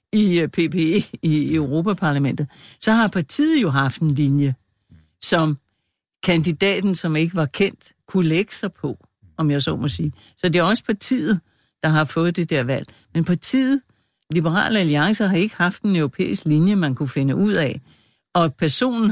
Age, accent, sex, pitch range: 60-79, native, female, 150-195 Hz